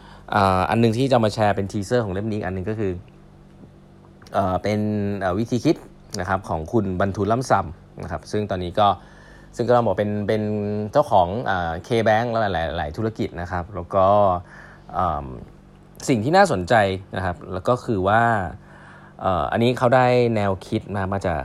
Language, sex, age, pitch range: Thai, male, 20-39, 85-110 Hz